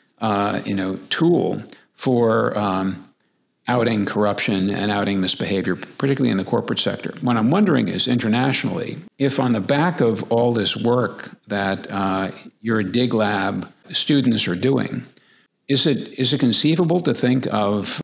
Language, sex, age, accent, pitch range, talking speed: English, male, 50-69, American, 100-125 Hz, 150 wpm